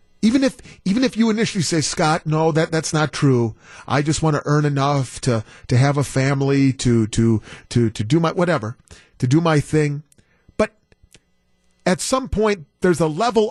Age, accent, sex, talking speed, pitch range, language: 40-59, American, male, 185 wpm, 125-195 Hz, English